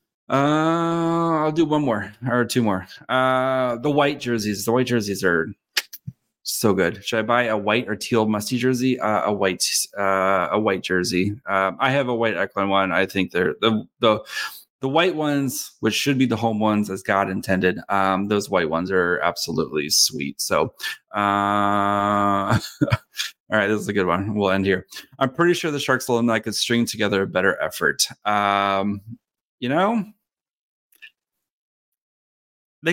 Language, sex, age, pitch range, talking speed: English, male, 20-39, 100-130 Hz, 170 wpm